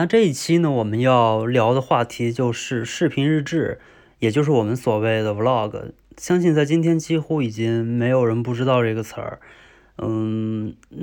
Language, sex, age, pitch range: Chinese, male, 20-39, 115-130 Hz